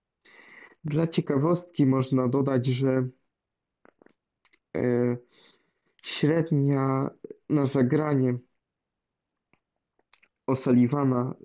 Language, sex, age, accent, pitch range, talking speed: Polish, male, 20-39, native, 130-150 Hz, 50 wpm